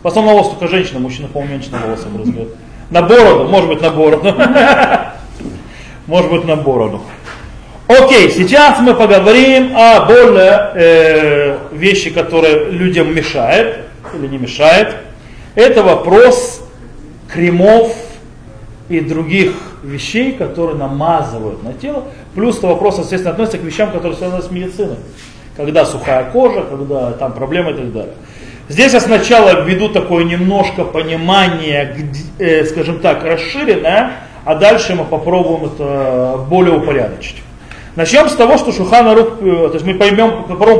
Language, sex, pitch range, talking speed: Russian, male, 155-220 Hz, 130 wpm